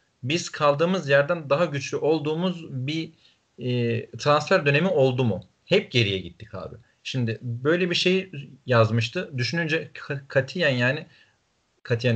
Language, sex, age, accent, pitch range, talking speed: Turkish, male, 40-59, native, 120-150 Hz, 125 wpm